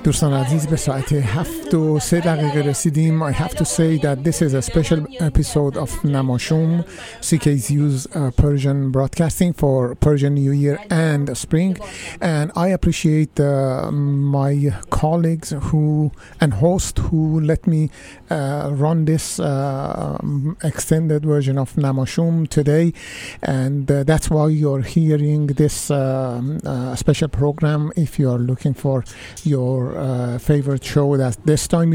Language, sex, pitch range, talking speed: Persian, male, 140-165 Hz, 125 wpm